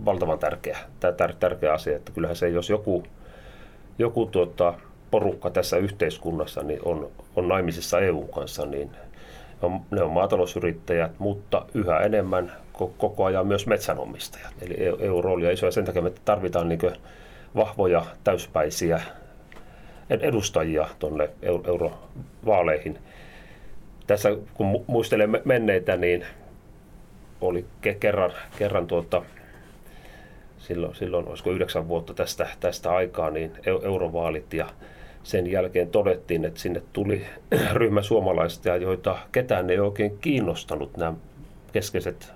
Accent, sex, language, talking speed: native, male, Finnish, 115 wpm